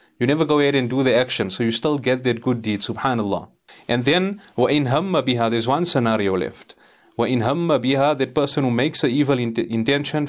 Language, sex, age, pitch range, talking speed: English, male, 30-49, 110-135 Hz, 200 wpm